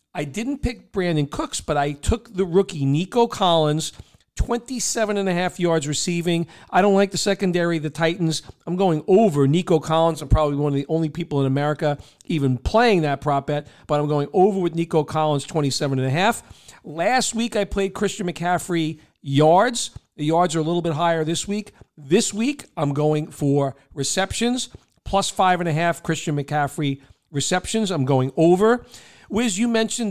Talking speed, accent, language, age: 180 wpm, American, English, 50-69